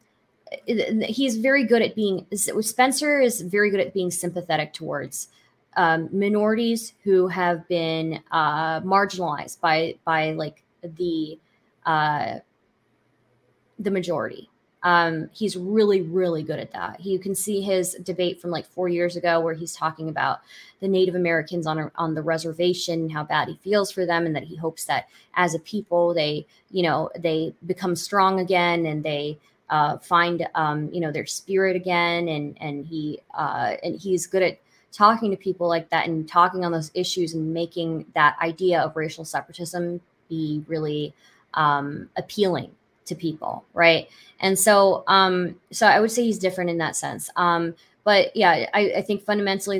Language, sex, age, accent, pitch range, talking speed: English, female, 20-39, American, 160-185 Hz, 165 wpm